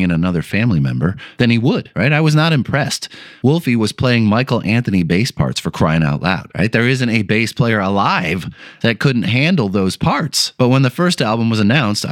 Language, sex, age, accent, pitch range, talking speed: English, male, 30-49, American, 105-155 Hz, 210 wpm